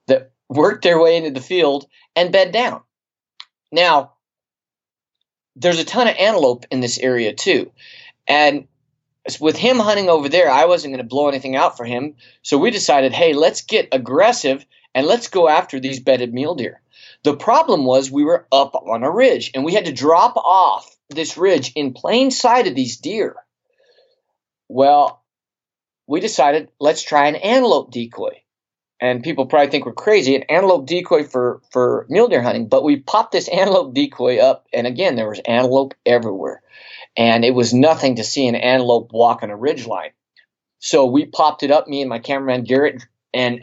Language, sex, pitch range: English, male, 130-190 Hz